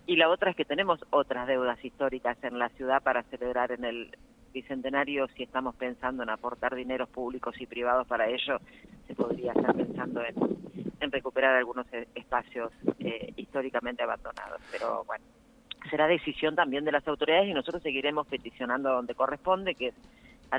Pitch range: 125-160 Hz